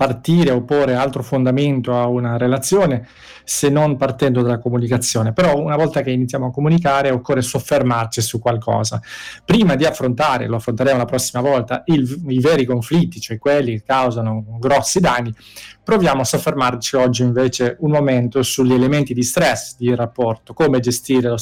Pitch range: 120-145 Hz